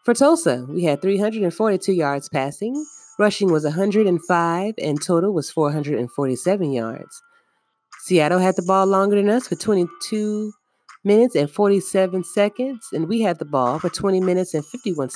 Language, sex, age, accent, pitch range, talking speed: English, female, 30-49, American, 155-220 Hz, 150 wpm